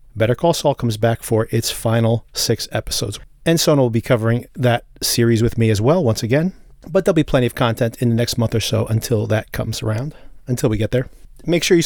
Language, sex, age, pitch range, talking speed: English, male, 40-59, 110-135 Hz, 235 wpm